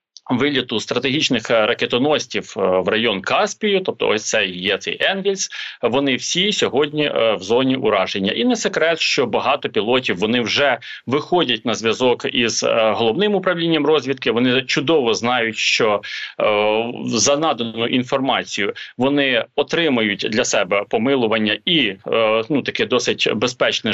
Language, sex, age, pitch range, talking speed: Ukrainian, male, 40-59, 120-160 Hz, 130 wpm